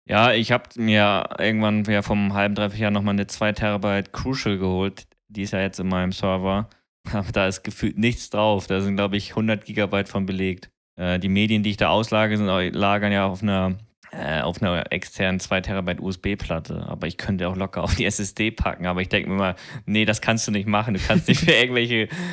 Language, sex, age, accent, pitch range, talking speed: German, male, 20-39, German, 95-110 Hz, 220 wpm